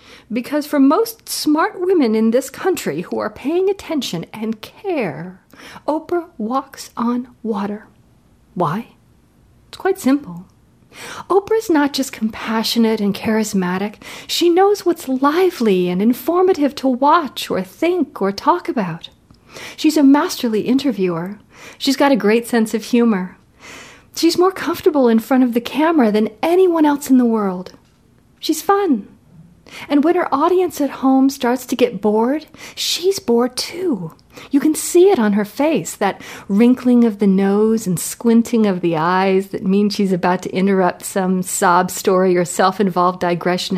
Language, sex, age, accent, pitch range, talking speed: English, female, 40-59, American, 205-290 Hz, 150 wpm